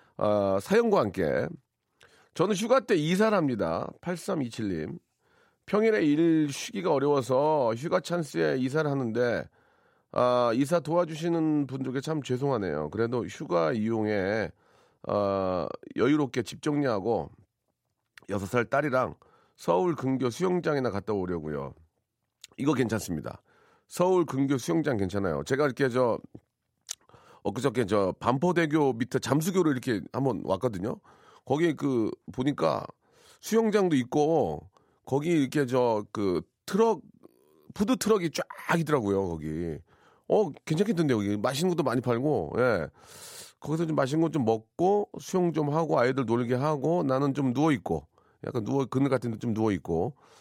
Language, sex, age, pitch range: Korean, male, 40-59, 115-170 Hz